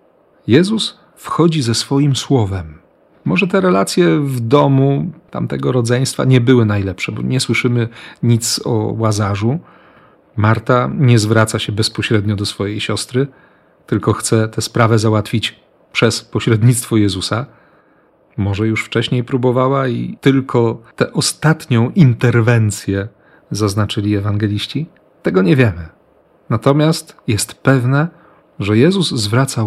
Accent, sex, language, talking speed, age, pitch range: native, male, Polish, 115 wpm, 40-59, 110-140 Hz